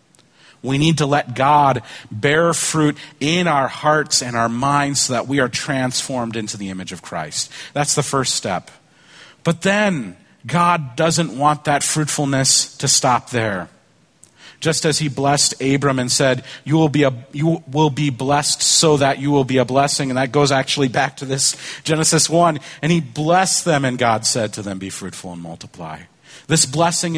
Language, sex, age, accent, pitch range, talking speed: English, male, 40-59, American, 115-150 Hz, 185 wpm